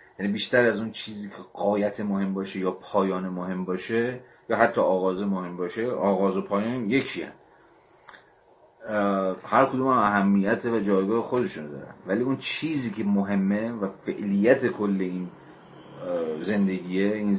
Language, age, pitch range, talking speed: Persian, 40-59, 95-115 Hz, 140 wpm